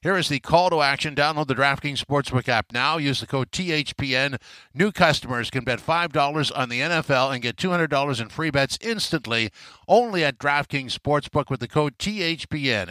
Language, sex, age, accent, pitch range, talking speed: English, male, 60-79, American, 125-150 Hz, 180 wpm